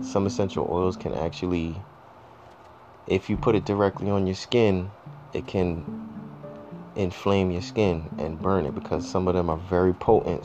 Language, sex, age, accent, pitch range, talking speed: English, male, 20-39, American, 85-100 Hz, 160 wpm